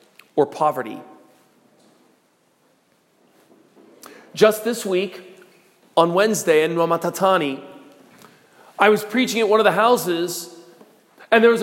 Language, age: English, 40-59